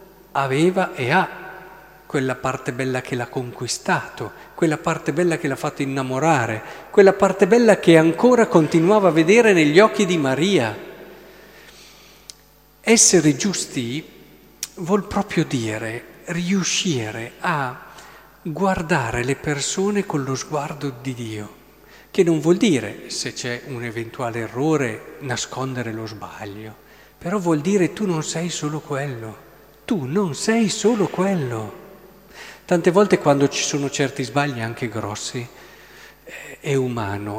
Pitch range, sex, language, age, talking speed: 130-185 Hz, male, Italian, 50-69, 125 wpm